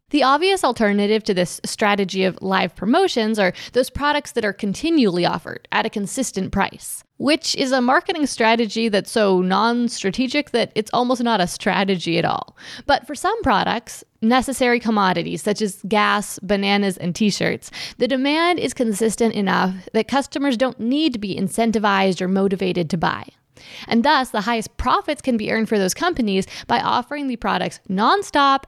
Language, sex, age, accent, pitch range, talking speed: English, female, 20-39, American, 200-260 Hz, 165 wpm